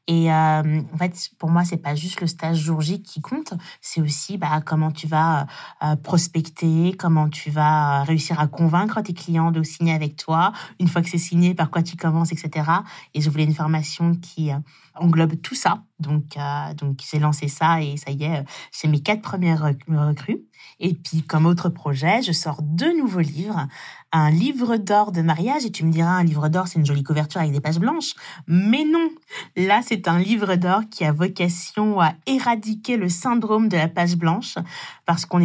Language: French